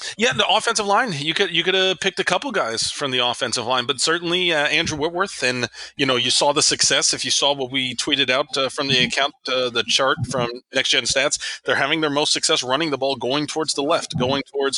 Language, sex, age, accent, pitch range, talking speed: English, male, 30-49, American, 120-150 Hz, 250 wpm